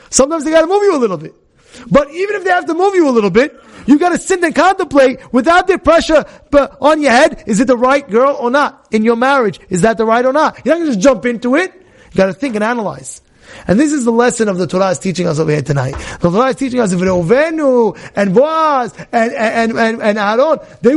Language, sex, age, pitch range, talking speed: English, male, 30-49, 180-275 Hz, 250 wpm